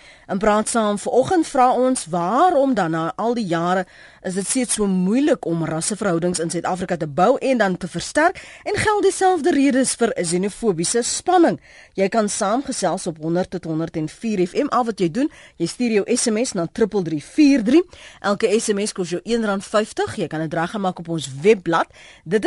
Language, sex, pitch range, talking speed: Dutch, female, 180-250 Hz, 180 wpm